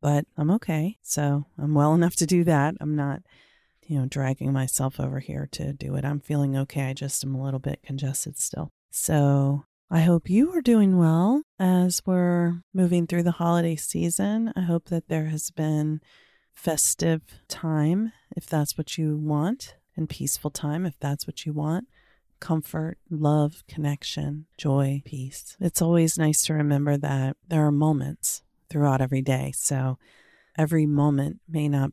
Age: 30-49